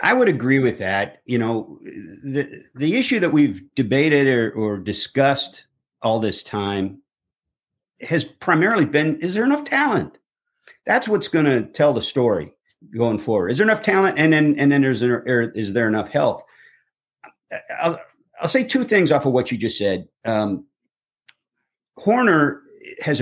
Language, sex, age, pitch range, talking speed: English, male, 50-69, 110-145 Hz, 165 wpm